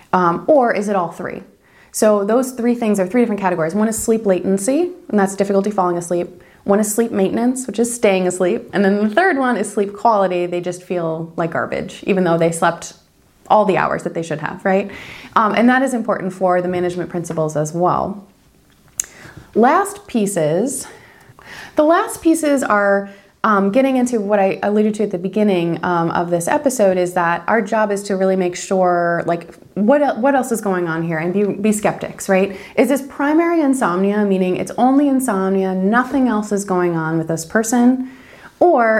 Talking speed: 195 wpm